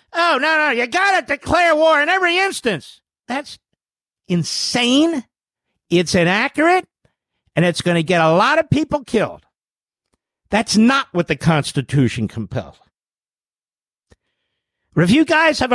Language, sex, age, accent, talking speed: English, male, 50-69, American, 135 wpm